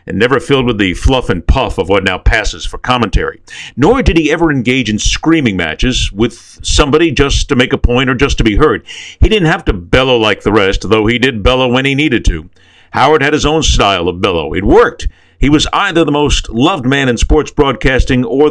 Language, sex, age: English, male, 50-69